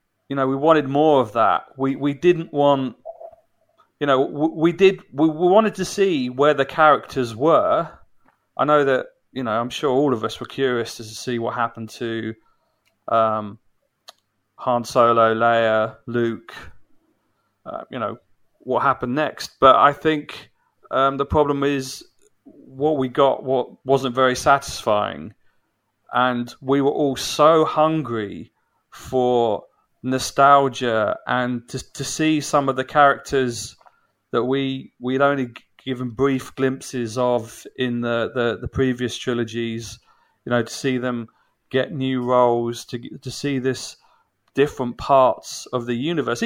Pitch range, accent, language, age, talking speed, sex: 120-150 Hz, British, English, 30-49, 150 wpm, male